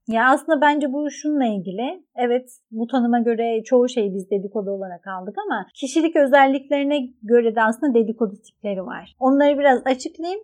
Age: 30-49